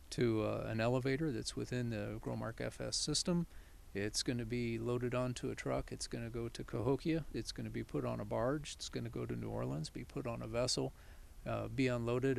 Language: English